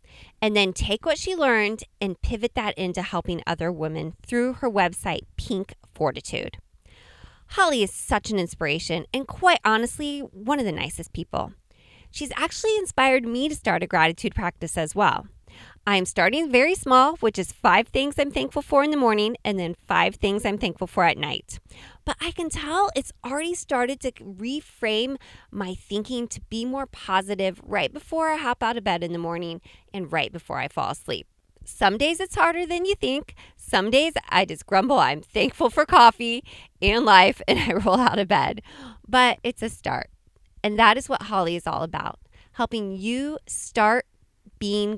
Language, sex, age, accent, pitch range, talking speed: English, female, 20-39, American, 190-270 Hz, 180 wpm